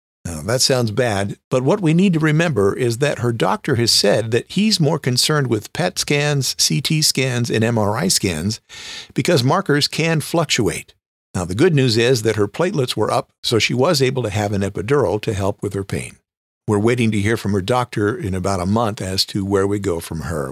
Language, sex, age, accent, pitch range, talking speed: English, male, 50-69, American, 100-130 Hz, 215 wpm